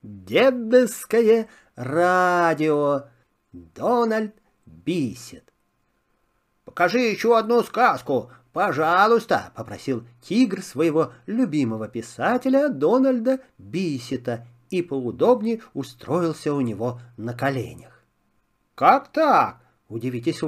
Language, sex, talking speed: Russian, male, 75 wpm